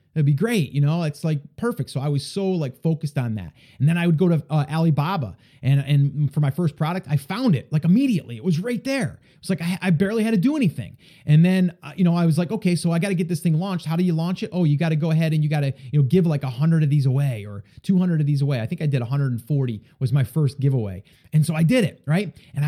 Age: 30-49